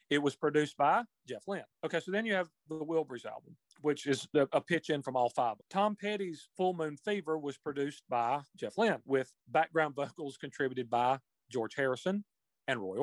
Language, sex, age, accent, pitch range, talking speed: English, male, 40-59, American, 130-180 Hz, 190 wpm